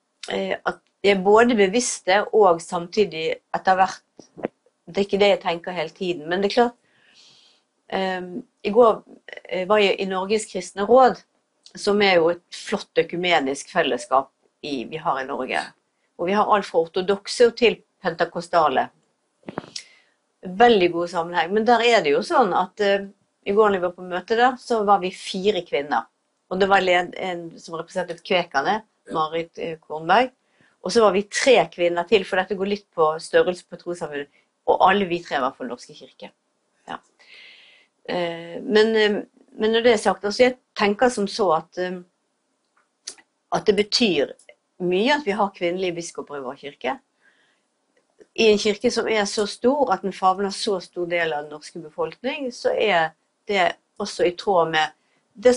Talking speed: 170 wpm